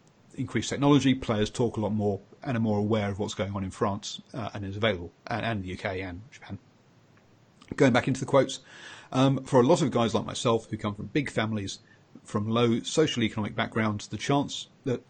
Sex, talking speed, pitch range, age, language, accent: male, 210 wpm, 105-130 Hz, 40-59, English, British